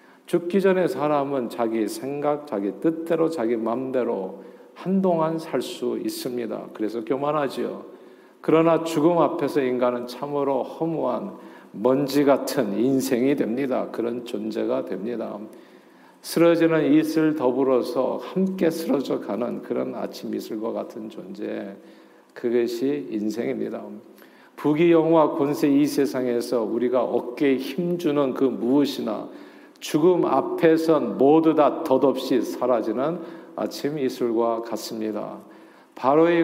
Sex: male